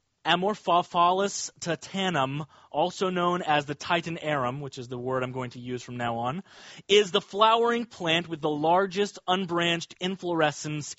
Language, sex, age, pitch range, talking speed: English, male, 30-49, 150-200 Hz, 155 wpm